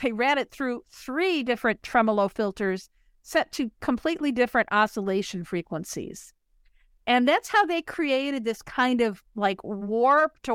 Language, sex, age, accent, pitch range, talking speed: English, female, 50-69, American, 210-275 Hz, 135 wpm